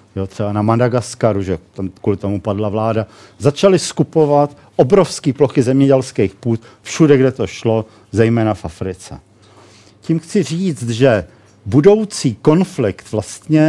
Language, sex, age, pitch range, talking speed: Czech, male, 50-69, 110-145 Hz, 120 wpm